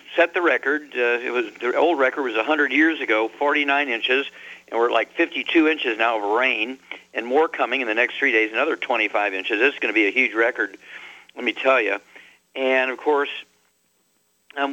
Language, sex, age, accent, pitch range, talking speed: English, male, 60-79, American, 125-160 Hz, 210 wpm